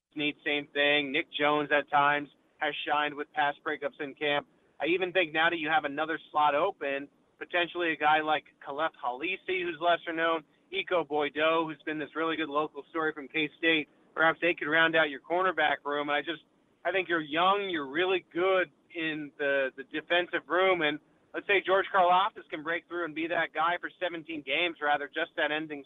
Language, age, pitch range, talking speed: English, 30-49, 150-175 Hz, 200 wpm